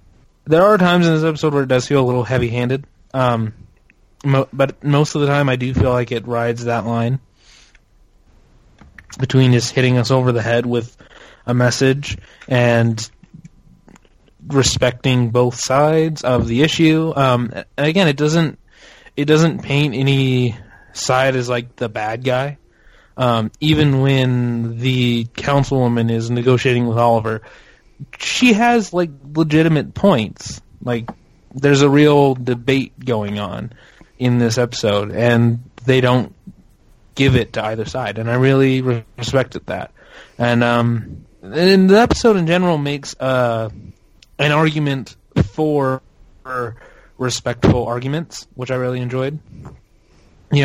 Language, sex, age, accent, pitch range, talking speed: English, male, 20-39, American, 120-140 Hz, 135 wpm